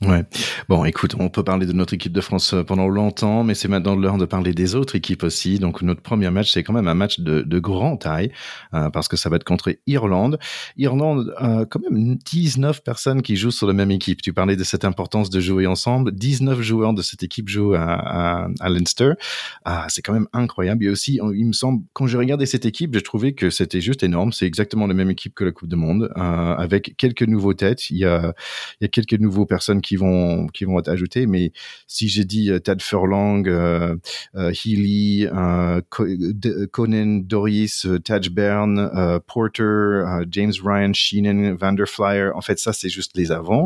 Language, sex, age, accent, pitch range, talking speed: French, male, 30-49, French, 90-110 Hz, 215 wpm